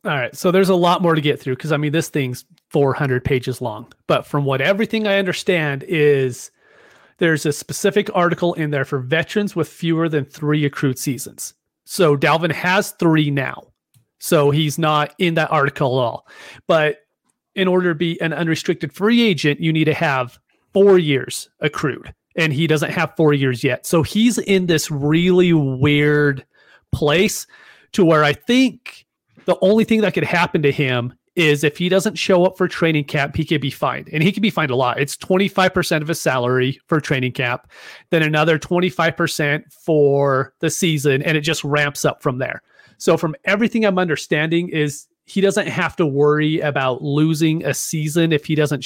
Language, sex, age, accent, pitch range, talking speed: English, male, 30-49, American, 140-175 Hz, 190 wpm